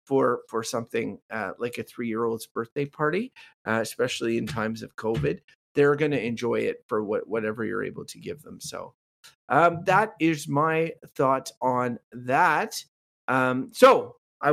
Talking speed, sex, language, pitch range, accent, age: 160 wpm, male, English, 130-175 Hz, American, 30-49